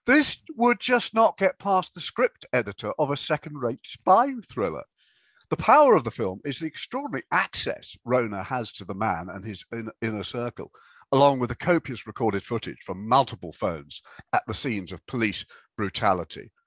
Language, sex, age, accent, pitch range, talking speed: English, male, 50-69, British, 115-185 Hz, 170 wpm